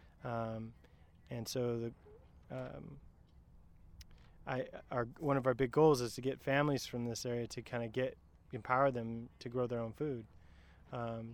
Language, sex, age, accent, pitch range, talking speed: English, male, 20-39, American, 115-130 Hz, 165 wpm